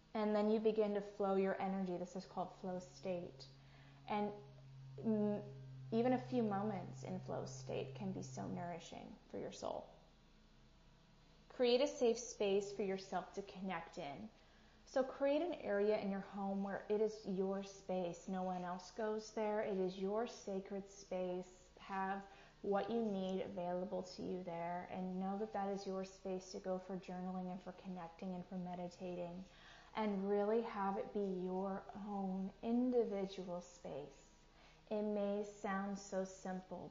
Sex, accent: female, American